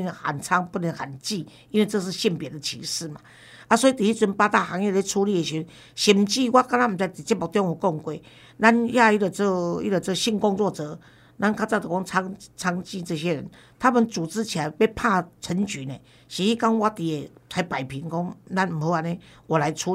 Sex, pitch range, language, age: female, 165-220 Hz, Chinese, 50-69